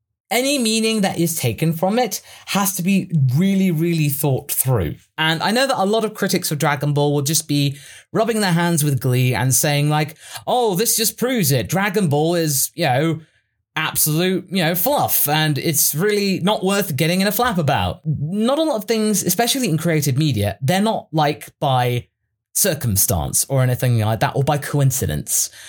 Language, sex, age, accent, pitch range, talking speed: English, male, 20-39, British, 130-185 Hz, 190 wpm